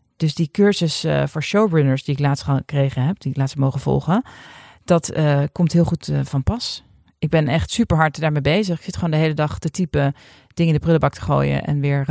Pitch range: 140-185 Hz